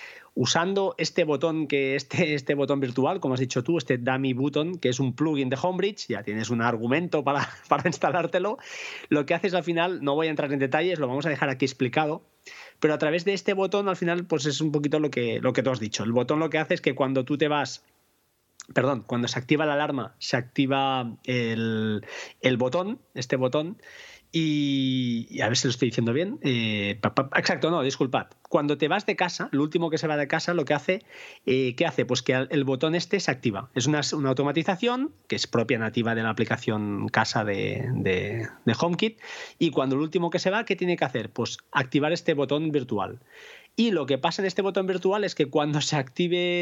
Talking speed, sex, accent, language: 220 wpm, male, Spanish, Spanish